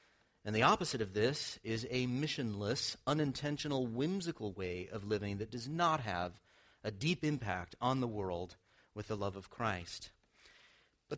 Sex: male